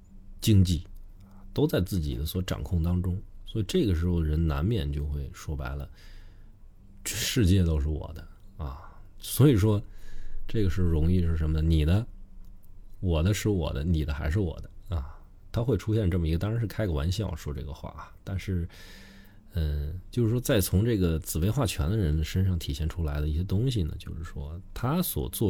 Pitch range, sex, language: 80-100 Hz, male, Chinese